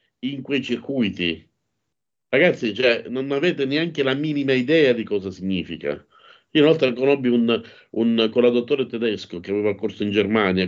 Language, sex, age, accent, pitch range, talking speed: Italian, male, 50-69, native, 100-135 Hz, 155 wpm